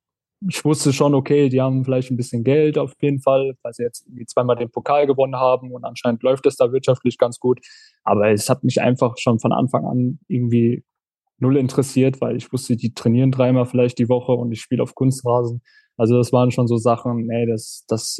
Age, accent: 10-29, German